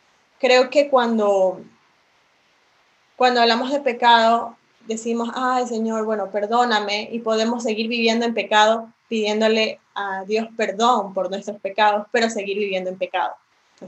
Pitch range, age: 205-240 Hz, 10-29